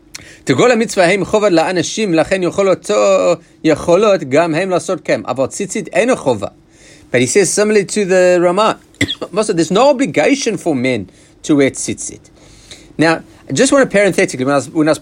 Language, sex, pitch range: English, male, 115-175 Hz